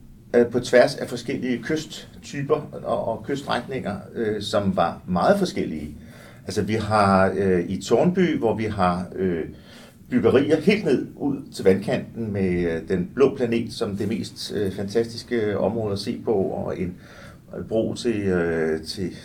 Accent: native